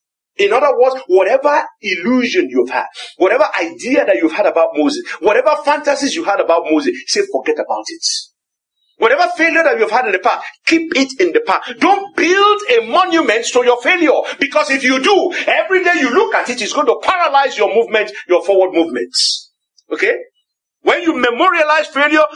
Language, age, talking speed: English, 50-69, 185 wpm